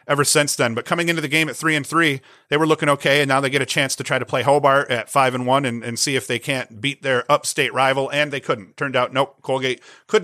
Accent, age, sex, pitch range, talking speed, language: American, 40-59, male, 130-150 Hz, 280 wpm, English